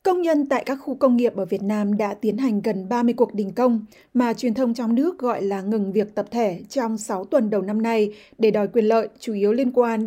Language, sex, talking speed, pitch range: Vietnamese, female, 255 wpm, 215-255 Hz